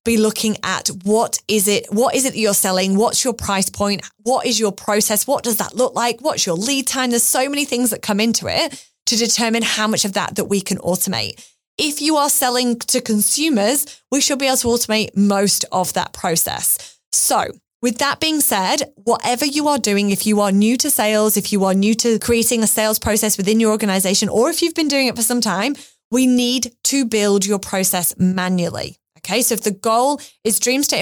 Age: 20-39